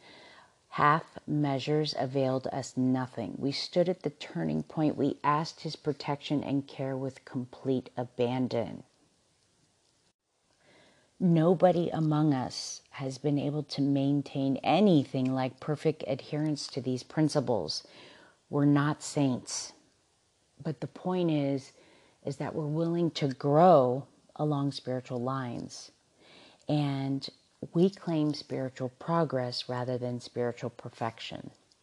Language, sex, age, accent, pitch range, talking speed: English, female, 40-59, American, 130-150 Hz, 115 wpm